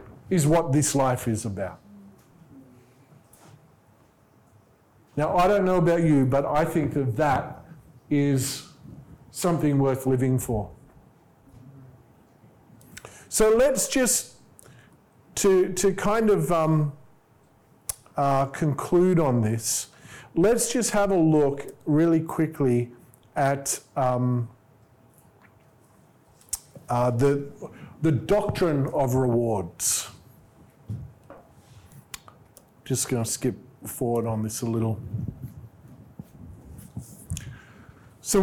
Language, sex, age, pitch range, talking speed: English, male, 50-69, 130-170 Hz, 90 wpm